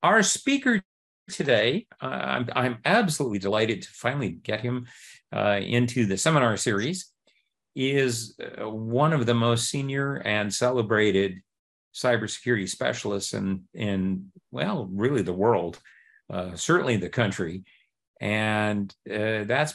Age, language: 50-69, English